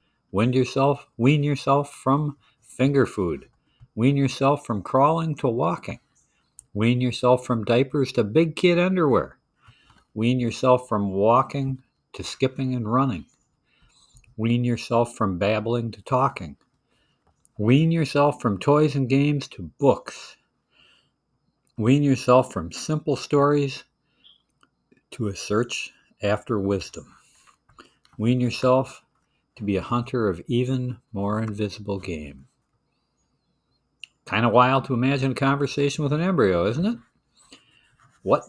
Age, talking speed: 60-79, 115 wpm